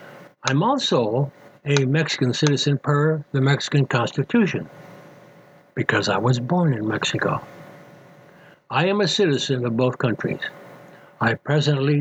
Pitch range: 130-165 Hz